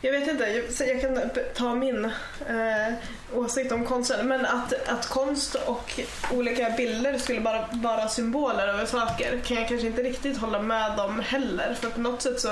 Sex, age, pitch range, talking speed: female, 20-39, 210-240 Hz, 185 wpm